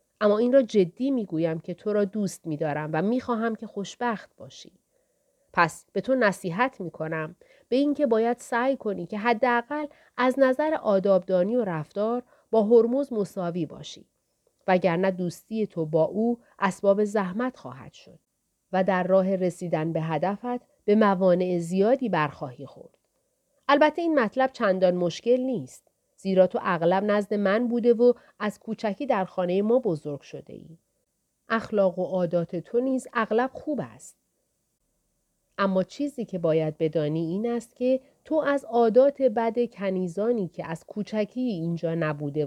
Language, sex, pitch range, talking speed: Persian, female, 175-240 Hz, 145 wpm